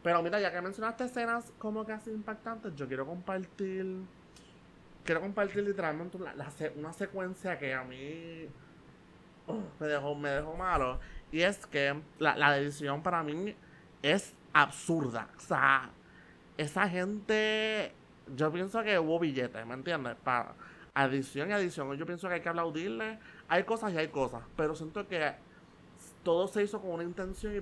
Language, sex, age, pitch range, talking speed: Spanish, male, 30-49, 145-185 Hz, 160 wpm